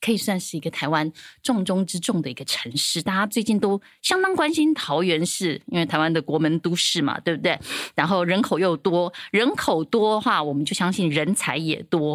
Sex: female